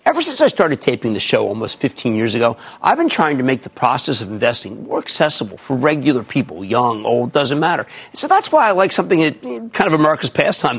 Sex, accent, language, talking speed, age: male, American, English, 215 wpm, 50-69